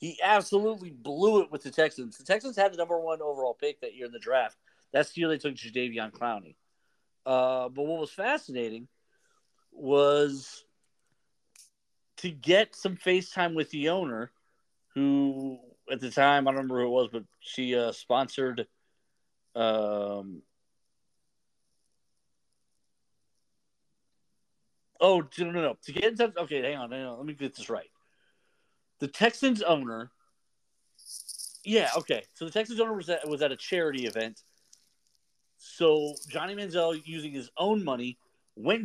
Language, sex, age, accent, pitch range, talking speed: English, male, 50-69, American, 130-180 Hz, 150 wpm